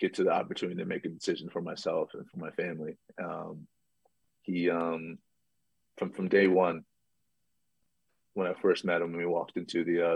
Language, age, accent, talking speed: English, 30-49, American, 190 wpm